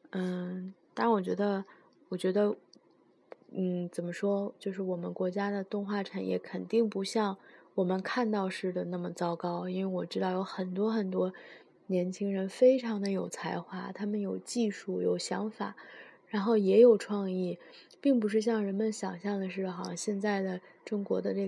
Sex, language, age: female, Chinese, 20-39